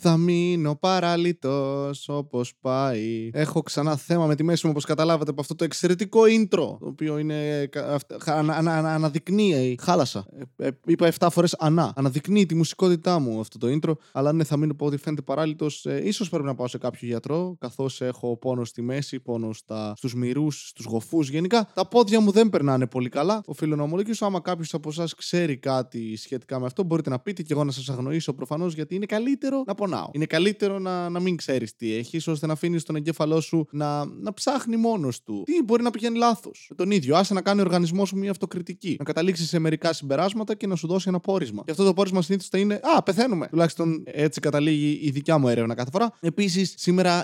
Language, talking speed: Greek, 210 wpm